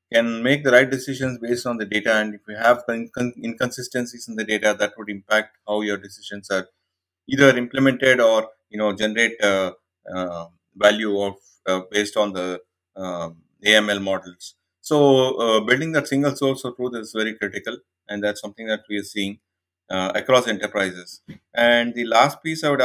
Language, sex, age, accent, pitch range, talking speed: English, male, 30-49, Indian, 100-125 Hz, 180 wpm